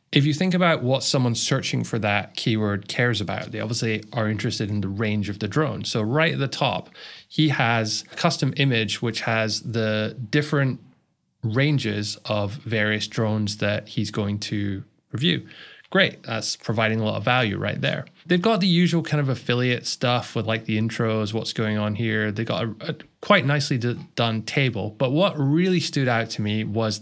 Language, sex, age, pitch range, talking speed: English, male, 20-39, 110-140 Hz, 190 wpm